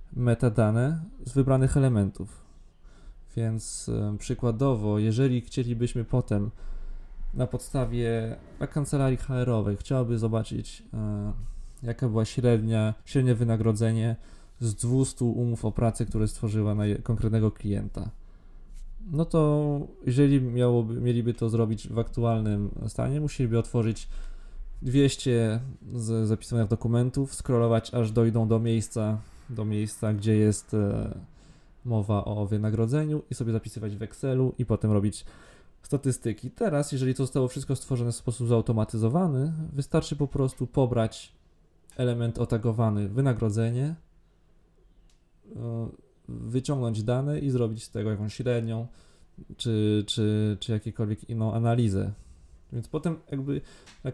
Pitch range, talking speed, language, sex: 110-130 Hz, 115 wpm, English, male